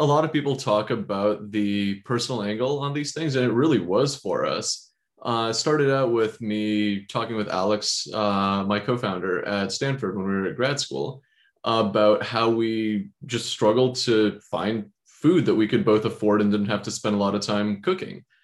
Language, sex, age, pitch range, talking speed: English, male, 20-39, 105-125 Hz, 200 wpm